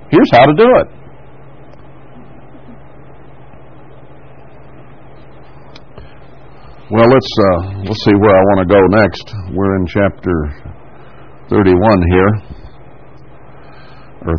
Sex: male